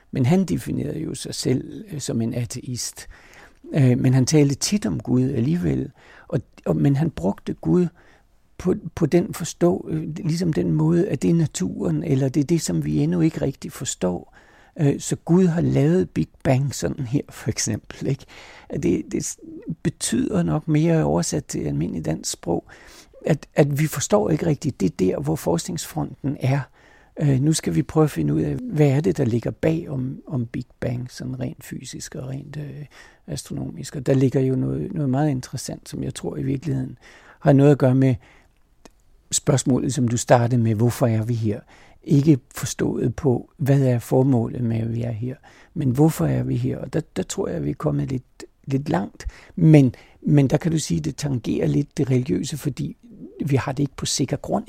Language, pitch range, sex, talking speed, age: Danish, 130-160 Hz, male, 180 wpm, 60-79